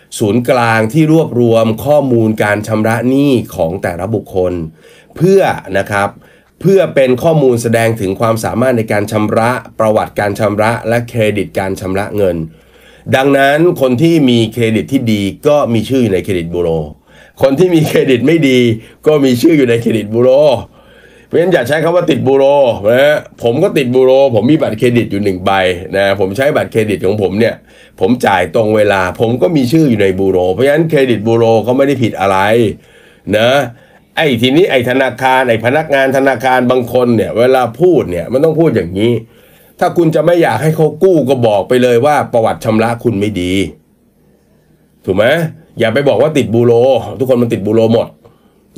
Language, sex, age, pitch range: Thai, male, 30-49, 105-135 Hz